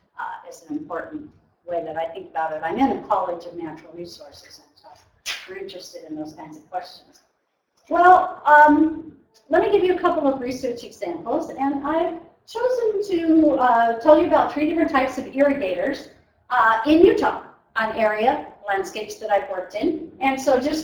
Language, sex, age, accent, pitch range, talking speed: English, female, 50-69, American, 175-275 Hz, 180 wpm